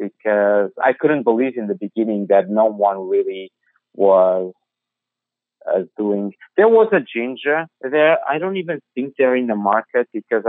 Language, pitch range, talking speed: English, 110-145 Hz, 160 wpm